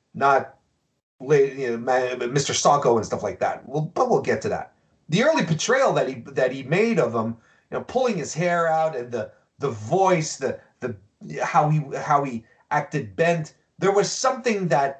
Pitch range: 140-205 Hz